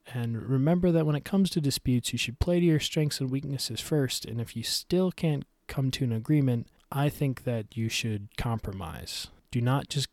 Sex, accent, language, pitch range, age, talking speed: male, American, English, 115-140 Hz, 20-39, 205 wpm